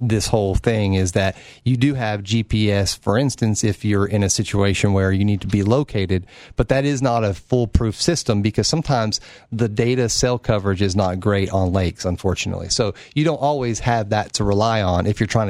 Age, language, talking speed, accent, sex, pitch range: 40-59, English, 205 wpm, American, male, 100-130 Hz